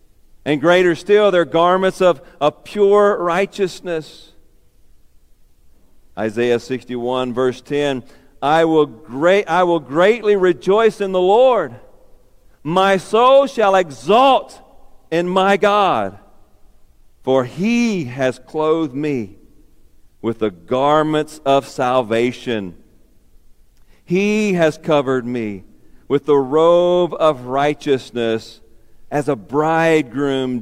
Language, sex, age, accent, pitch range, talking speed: English, male, 50-69, American, 115-165 Hz, 100 wpm